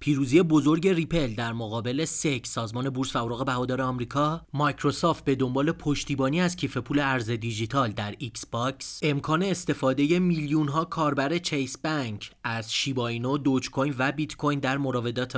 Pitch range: 130-170 Hz